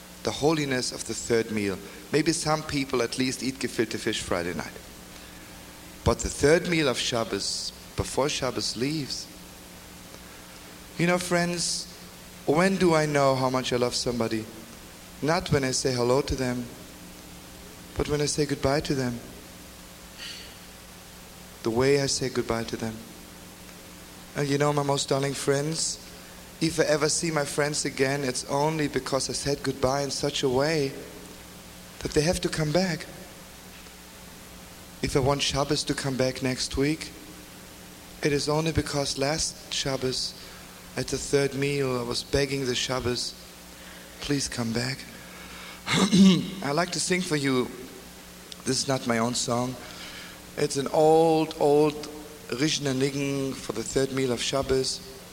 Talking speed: 150 wpm